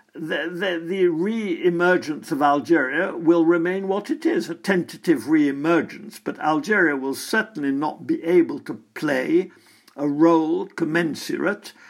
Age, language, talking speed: 60-79, English, 130 wpm